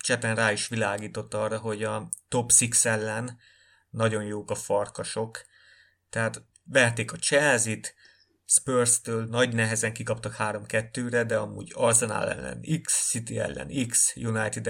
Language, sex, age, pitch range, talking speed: Hungarian, male, 30-49, 110-120 Hz, 130 wpm